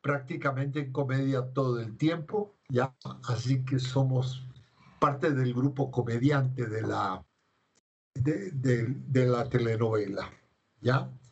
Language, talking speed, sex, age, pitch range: Spanish, 100 wpm, male, 60-79, 130-155 Hz